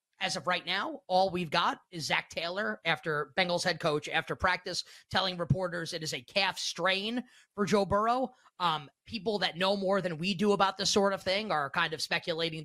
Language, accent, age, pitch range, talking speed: English, American, 20-39, 165-200 Hz, 205 wpm